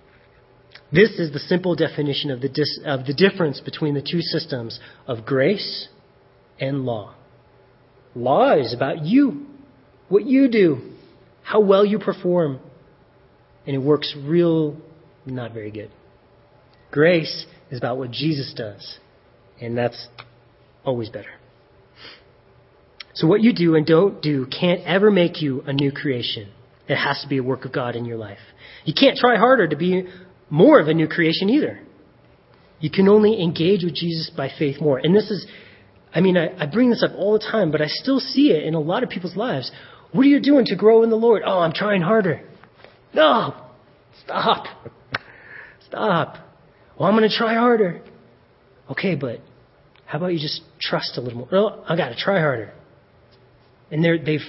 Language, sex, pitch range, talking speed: English, male, 135-190 Hz, 175 wpm